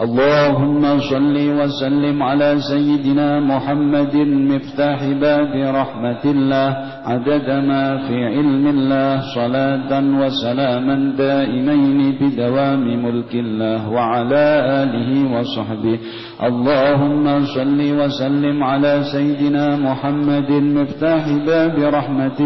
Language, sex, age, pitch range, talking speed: Indonesian, male, 50-69, 125-145 Hz, 90 wpm